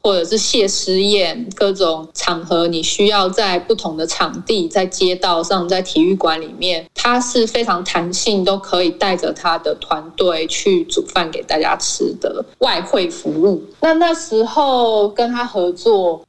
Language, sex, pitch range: Chinese, female, 175-275 Hz